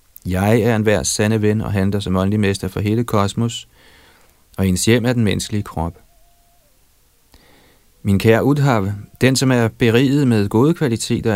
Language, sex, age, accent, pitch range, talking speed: Danish, male, 40-59, native, 95-115 Hz, 160 wpm